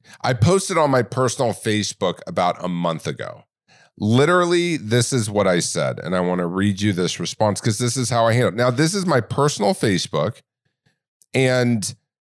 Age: 40-59